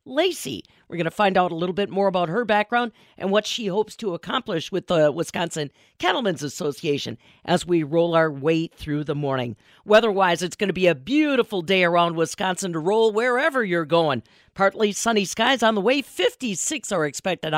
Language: English